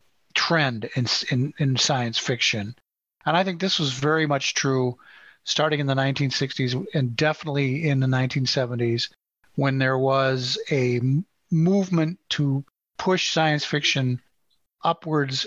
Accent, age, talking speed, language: American, 40-59, 130 wpm, English